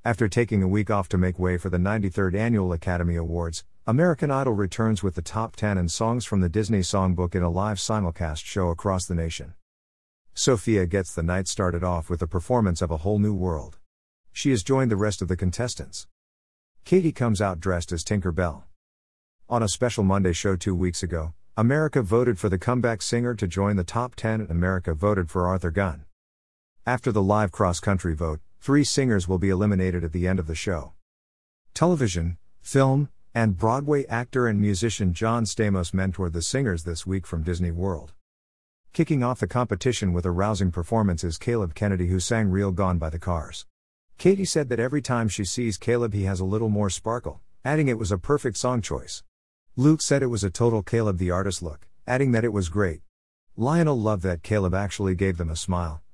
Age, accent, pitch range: 50-69, American, 85-115 Hz